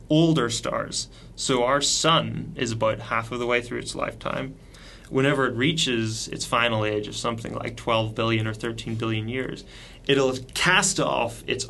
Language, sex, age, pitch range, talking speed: English, male, 30-49, 115-130 Hz, 170 wpm